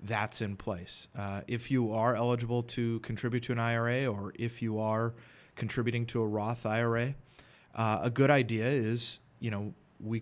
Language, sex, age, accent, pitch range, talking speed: English, male, 30-49, American, 110-125 Hz, 175 wpm